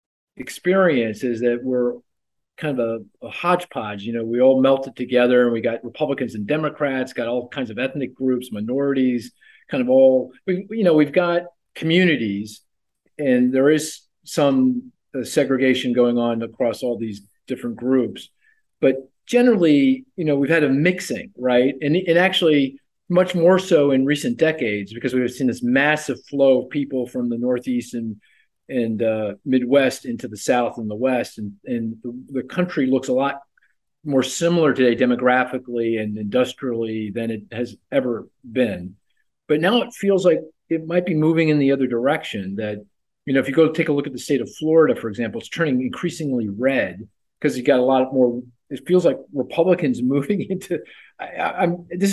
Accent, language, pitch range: American, English, 120-165 Hz